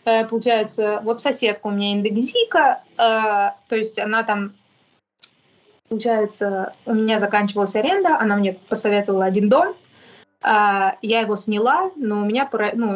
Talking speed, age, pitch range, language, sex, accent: 135 wpm, 20-39, 210-250 Hz, Russian, female, native